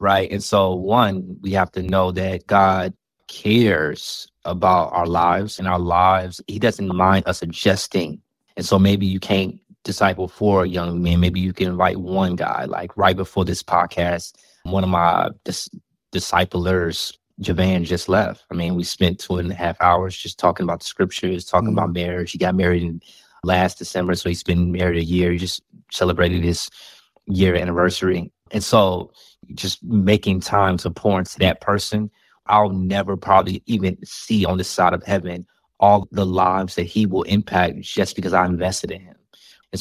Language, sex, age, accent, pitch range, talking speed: English, male, 20-39, American, 90-100 Hz, 180 wpm